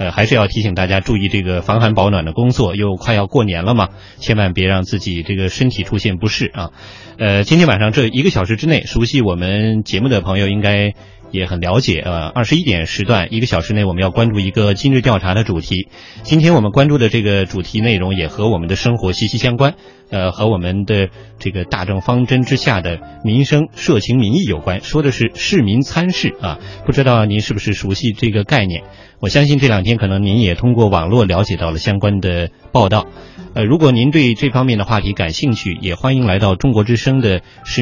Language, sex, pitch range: Chinese, male, 95-120 Hz